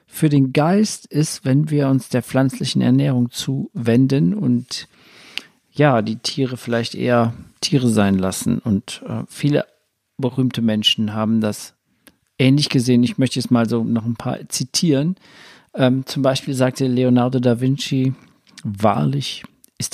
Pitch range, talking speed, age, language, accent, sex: 115-155 Hz, 140 wpm, 50-69, German, German, male